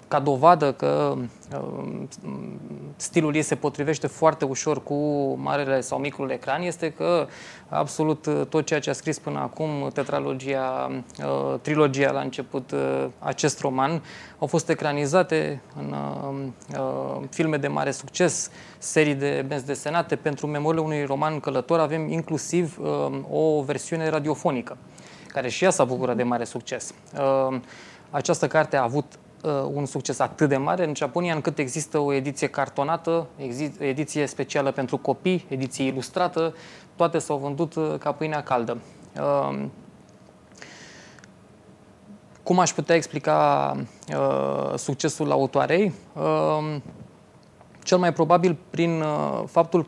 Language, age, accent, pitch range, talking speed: English, 20-39, Romanian, 130-155 Hz, 120 wpm